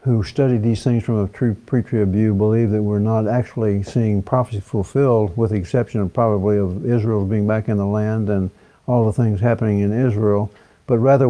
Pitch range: 110-130 Hz